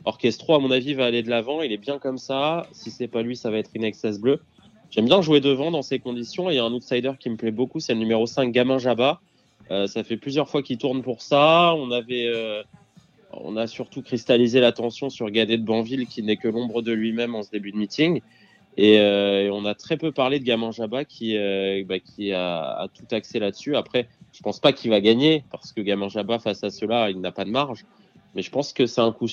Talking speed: 255 wpm